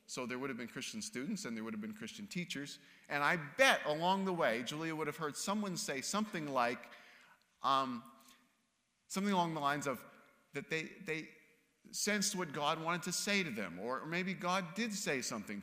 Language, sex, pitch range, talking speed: English, male, 155-220 Hz, 195 wpm